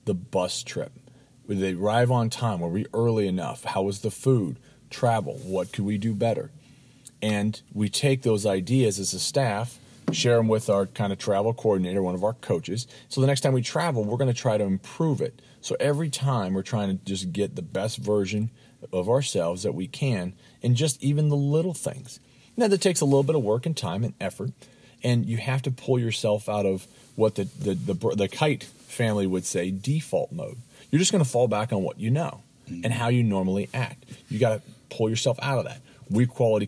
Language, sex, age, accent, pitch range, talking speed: English, male, 40-59, American, 100-130 Hz, 220 wpm